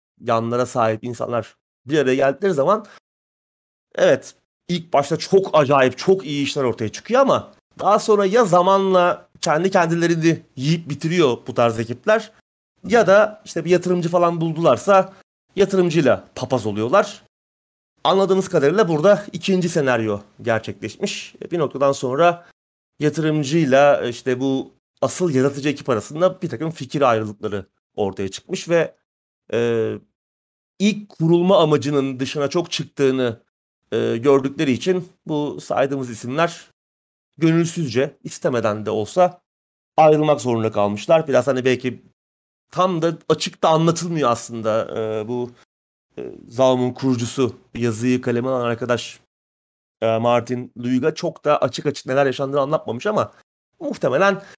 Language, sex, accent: Turkish, male, native